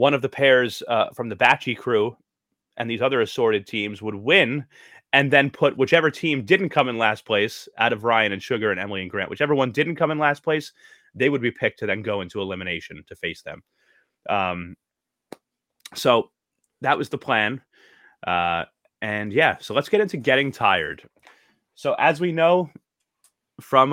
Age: 30-49